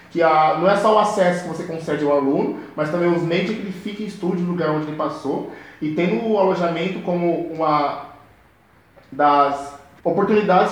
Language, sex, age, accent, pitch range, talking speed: Portuguese, male, 20-39, Brazilian, 160-200 Hz, 185 wpm